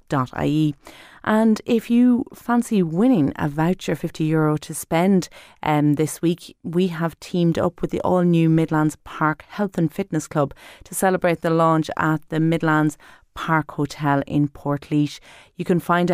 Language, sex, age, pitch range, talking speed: English, female, 30-49, 145-185 Hz, 155 wpm